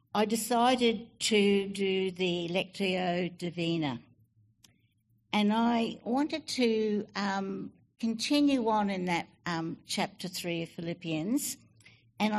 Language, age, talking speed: English, 60-79, 105 wpm